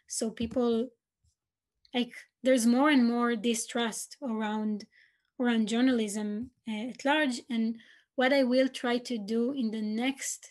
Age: 20-39